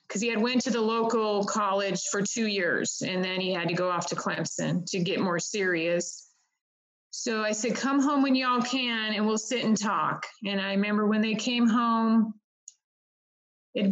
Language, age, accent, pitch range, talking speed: English, 30-49, American, 195-230 Hz, 195 wpm